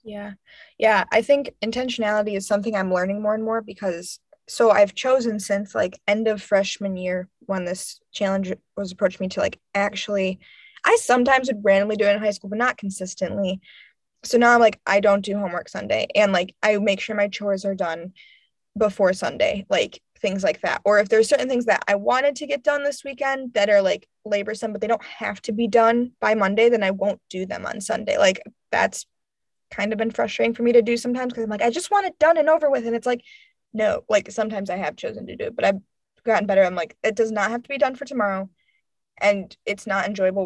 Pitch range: 200-250 Hz